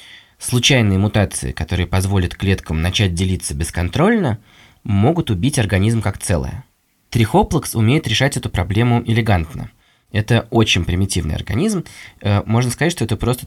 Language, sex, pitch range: Russian, male, 95-120 Hz